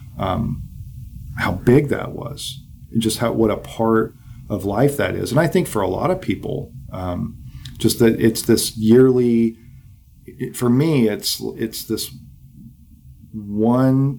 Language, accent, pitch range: English, American, 100-120 Hz